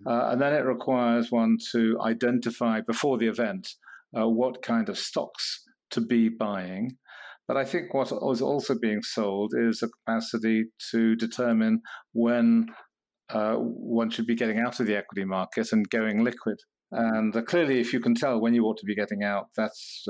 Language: English